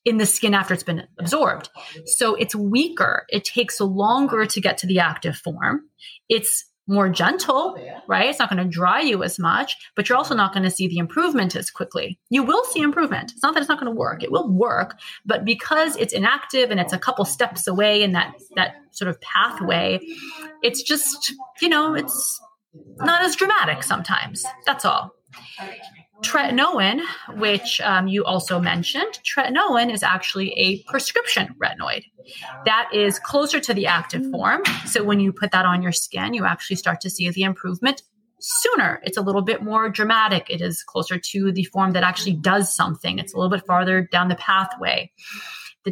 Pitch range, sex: 185-255 Hz, female